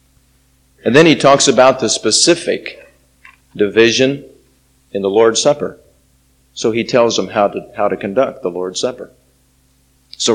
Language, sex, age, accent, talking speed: English, male, 40-59, American, 145 wpm